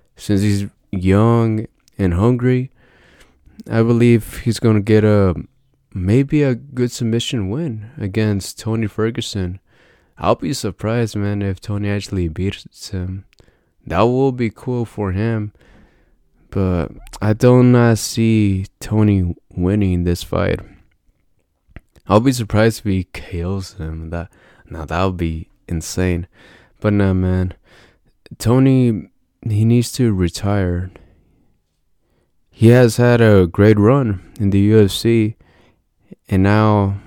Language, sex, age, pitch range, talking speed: English, male, 20-39, 95-115 Hz, 120 wpm